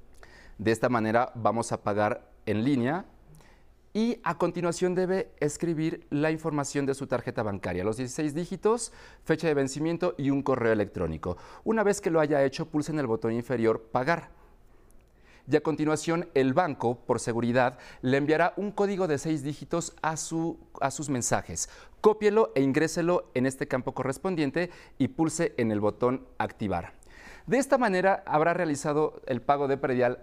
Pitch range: 125-170 Hz